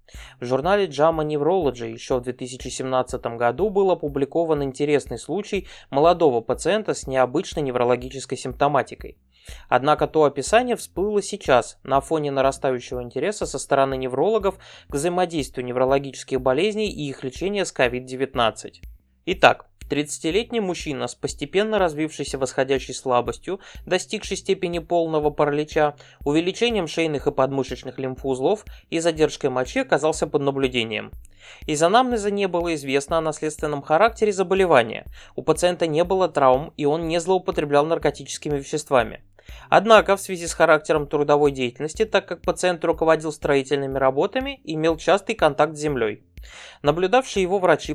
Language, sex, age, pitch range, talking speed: Russian, male, 20-39, 135-180 Hz, 130 wpm